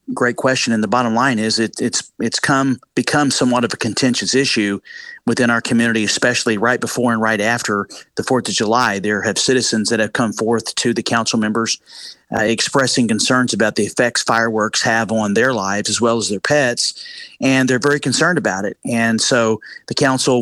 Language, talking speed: English, 195 wpm